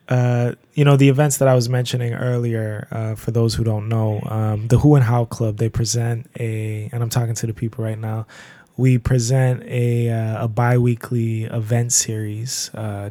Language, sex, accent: English, male, American